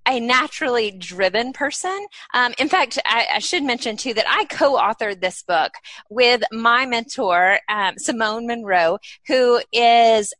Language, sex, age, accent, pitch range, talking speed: English, female, 20-39, American, 205-265 Hz, 145 wpm